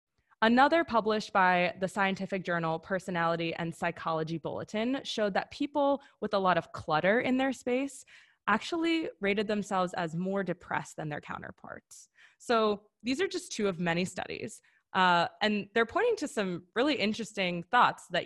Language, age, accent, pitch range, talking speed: English, 20-39, American, 170-225 Hz, 160 wpm